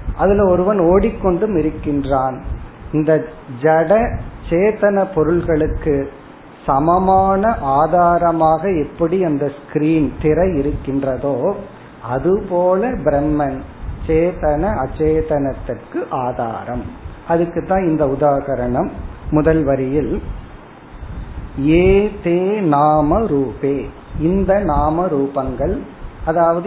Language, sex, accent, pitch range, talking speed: Tamil, male, native, 145-175 Hz, 45 wpm